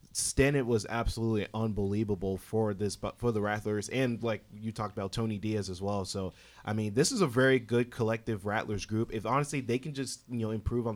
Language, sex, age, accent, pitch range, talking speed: English, male, 30-49, American, 110-130 Hz, 215 wpm